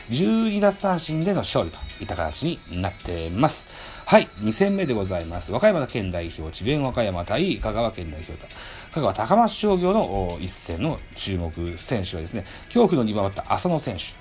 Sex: male